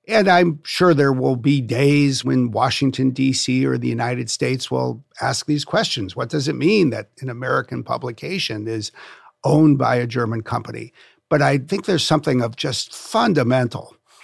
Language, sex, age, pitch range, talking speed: English, male, 50-69, 120-165 Hz, 170 wpm